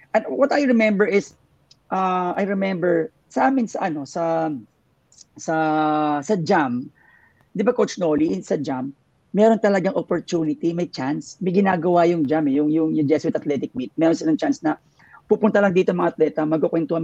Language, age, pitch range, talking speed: English, 40-59, 145-205 Hz, 165 wpm